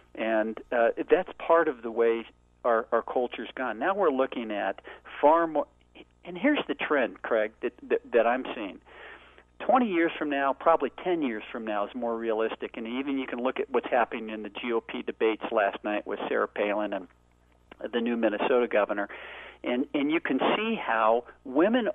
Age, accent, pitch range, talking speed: 50-69, American, 110-145 Hz, 190 wpm